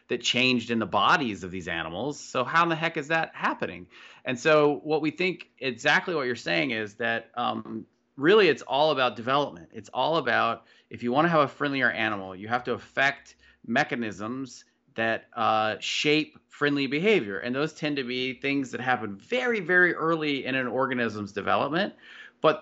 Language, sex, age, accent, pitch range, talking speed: English, male, 30-49, American, 125-170 Hz, 185 wpm